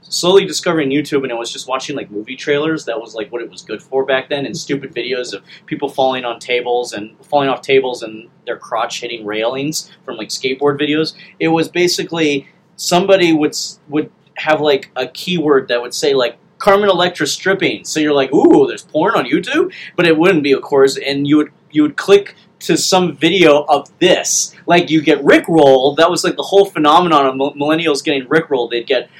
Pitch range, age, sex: 140-185 Hz, 30-49, male